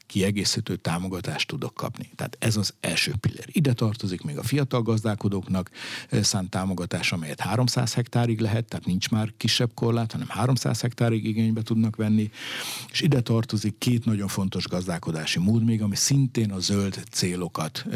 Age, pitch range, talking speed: 60-79, 95-120 Hz, 155 wpm